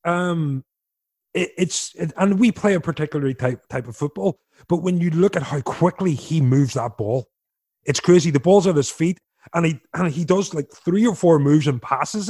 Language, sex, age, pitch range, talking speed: English, male, 30-49, 145-185 Hz, 210 wpm